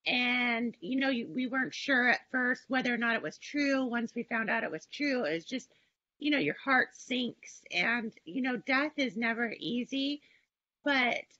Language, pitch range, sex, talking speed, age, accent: English, 235-270 Hz, female, 200 wpm, 30-49, American